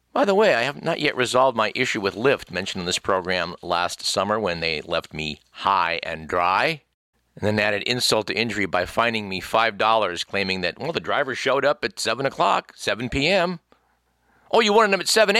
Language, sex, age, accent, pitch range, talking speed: English, male, 50-69, American, 95-140 Hz, 205 wpm